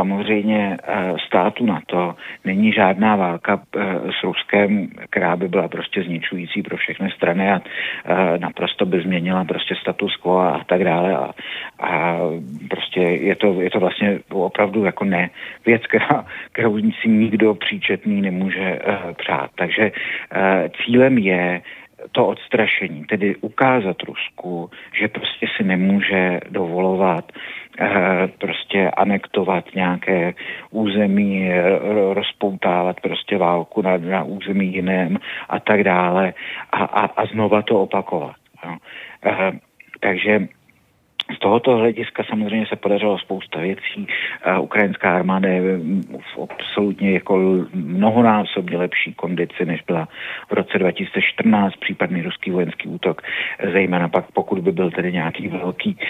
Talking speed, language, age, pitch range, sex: 120 wpm, Czech, 50-69, 90-105 Hz, male